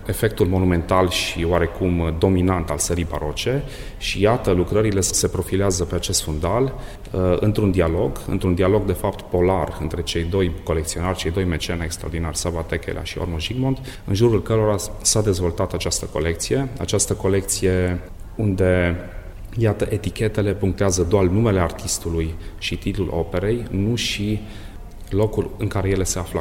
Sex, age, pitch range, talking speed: male, 30-49, 85-100 Hz, 145 wpm